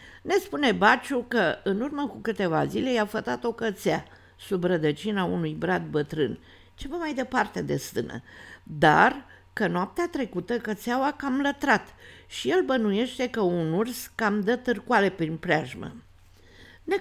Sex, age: female, 50-69